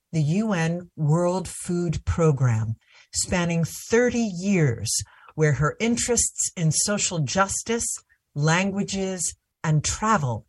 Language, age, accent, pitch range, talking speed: English, 50-69, American, 145-195 Hz, 95 wpm